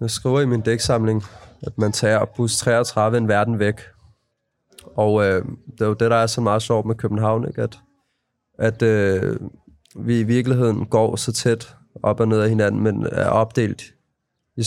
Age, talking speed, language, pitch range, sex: 20-39, 185 wpm, Danish, 105-120 Hz, male